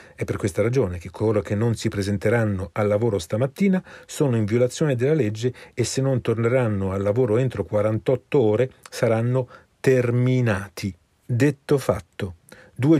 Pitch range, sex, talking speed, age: 110-130 Hz, male, 150 wpm, 40-59